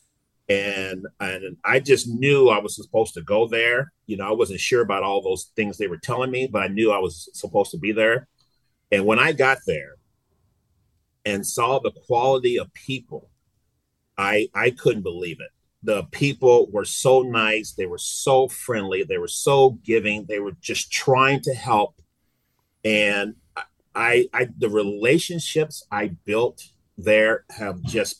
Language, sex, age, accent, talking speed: English, male, 40-59, American, 170 wpm